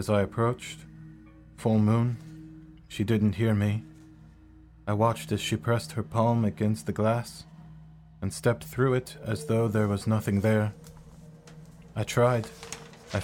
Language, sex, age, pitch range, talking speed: English, male, 20-39, 105-120 Hz, 145 wpm